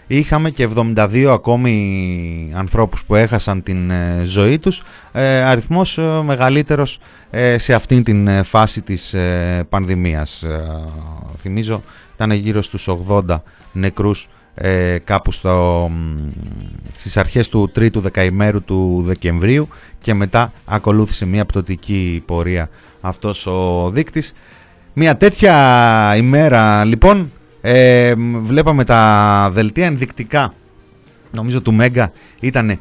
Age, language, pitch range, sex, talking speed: 30-49, Greek, 100-145 Hz, male, 100 wpm